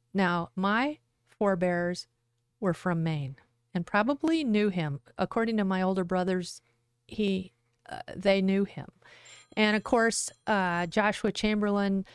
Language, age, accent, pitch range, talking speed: English, 40-59, American, 175-205 Hz, 130 wpm